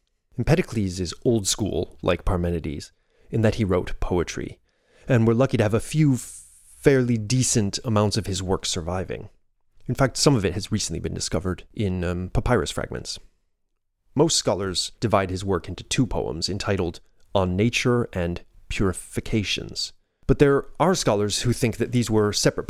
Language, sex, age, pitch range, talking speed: English, male, 30-49, 95-120 Hz, 160 wpm